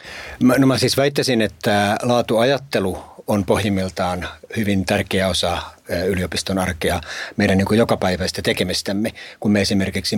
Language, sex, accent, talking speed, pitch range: Finnish, male, native, 105 wpm, 95-110 Hz